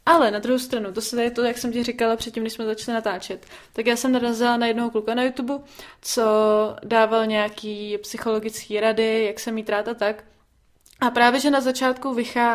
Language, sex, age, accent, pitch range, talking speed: Czech, female, 20-39, native, 215-245 Hz, 200 wpm